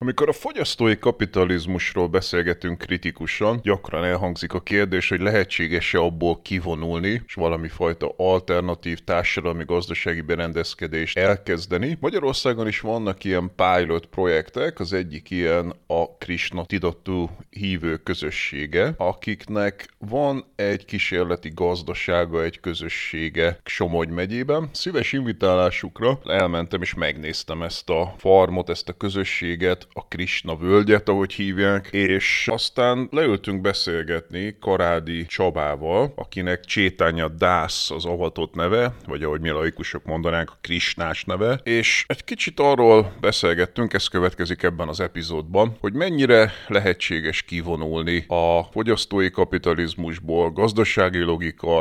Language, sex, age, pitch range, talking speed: Hungarian, male, 30-49, 85-100 Hz, 115 wpm